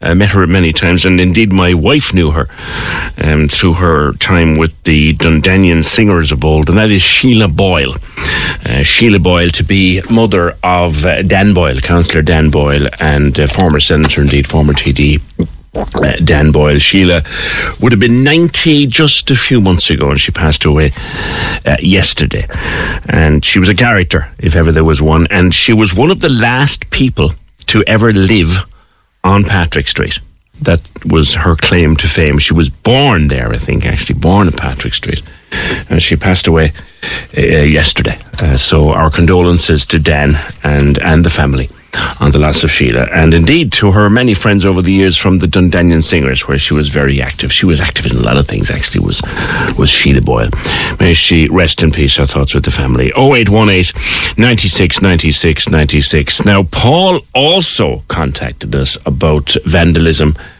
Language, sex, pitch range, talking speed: English, male, 75-95 Hz, 185 wpm